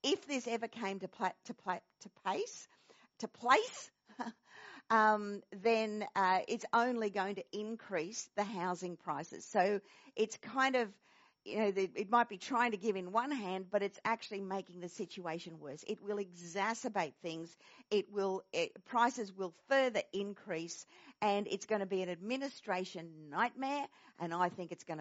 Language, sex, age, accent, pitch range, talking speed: English, female, 50-69, Australian, 185-240 Hz, 170 wpm